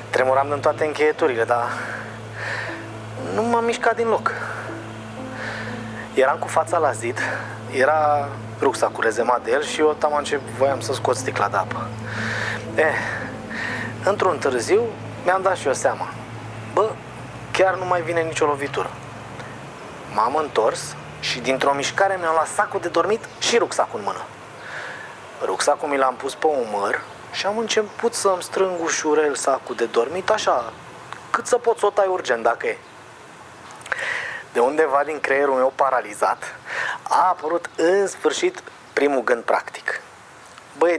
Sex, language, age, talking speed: male, Romanian, 20-39, 145 wpm